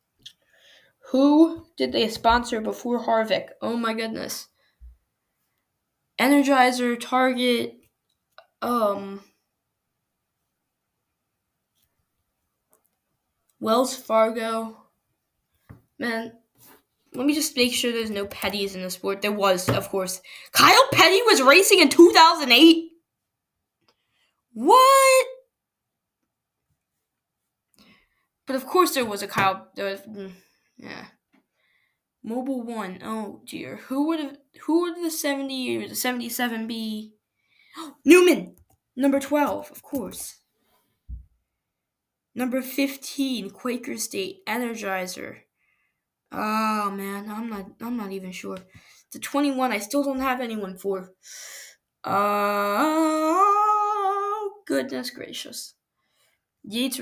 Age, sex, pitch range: 10-29, female, 205-290 Hz